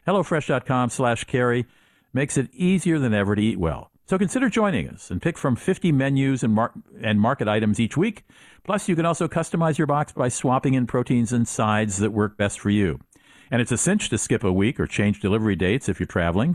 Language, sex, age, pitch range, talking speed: English, male, 50-69, 100-145 Hz, 215 wpm